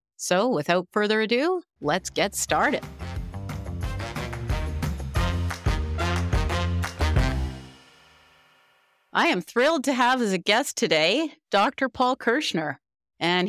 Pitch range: 140-220 Hz